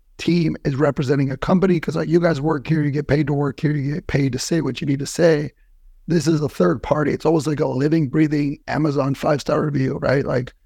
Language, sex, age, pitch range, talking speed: English, male, 30-49, 145-165 Hz, 240 wpm